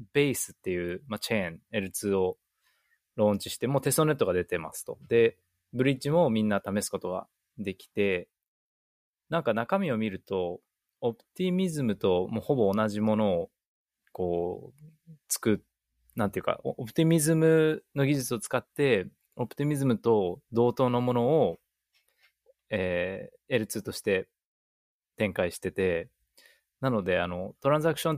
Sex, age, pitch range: male, 20-39, 95-145 Hz